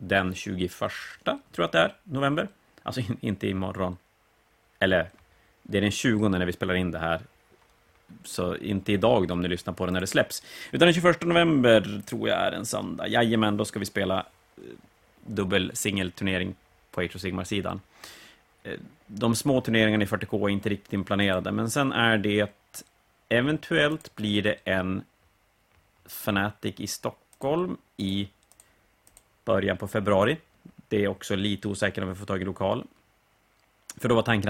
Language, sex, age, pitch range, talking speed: Swedish, male, 30-49, 95-110 Hz, 160 wpm